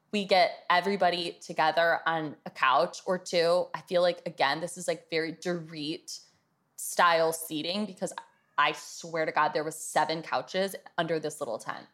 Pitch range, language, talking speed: 175-270 Hz, English, 165 wpm